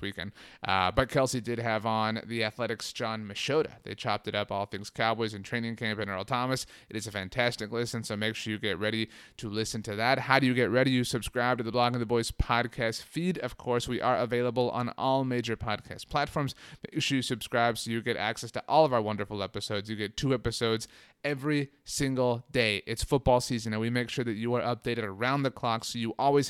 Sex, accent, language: male, American, English